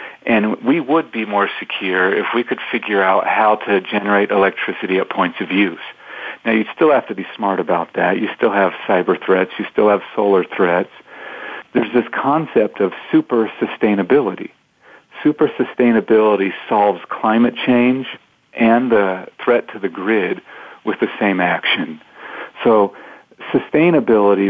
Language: English